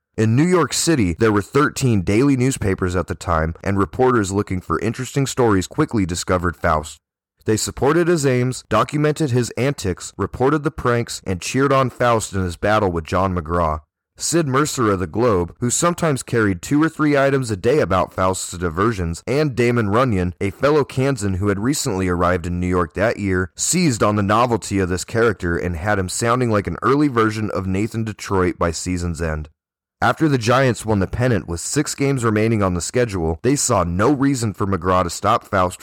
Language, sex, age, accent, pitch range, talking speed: English, male, 20-39, American, 90-120 Hz, 195 wpm